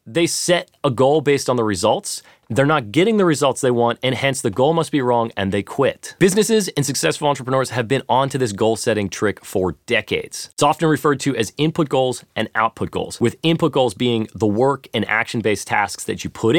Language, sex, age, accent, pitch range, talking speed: English, male, 30-49, American, 110-150 Hz, 215 wpm